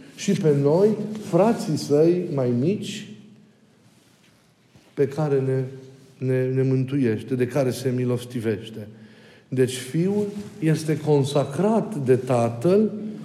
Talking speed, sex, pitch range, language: 105 wpm, male, 140-190 Hz, Romanian